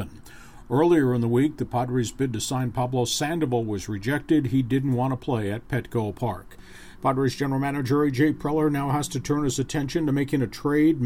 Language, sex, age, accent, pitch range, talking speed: English, male, 50-69, American, 125-150 Hz, 195 wpm